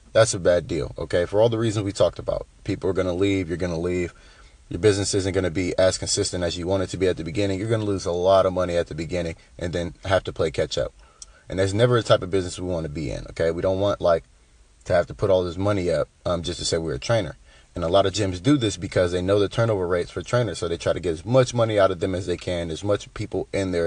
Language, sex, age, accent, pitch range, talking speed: English, male, 30-49, American, 85-110 Hz, 305 wpm